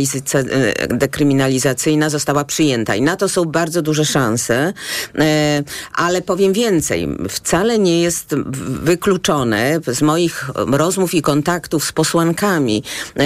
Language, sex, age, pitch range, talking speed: Polish, female, 40-59, 130-165 Hz, 110 wpm